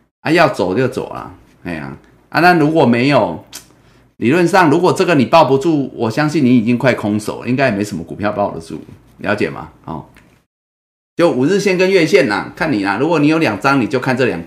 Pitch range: 120-195 Hz